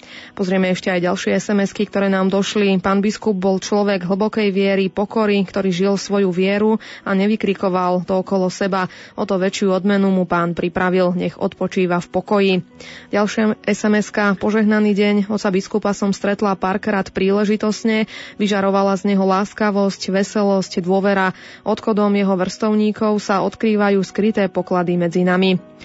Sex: female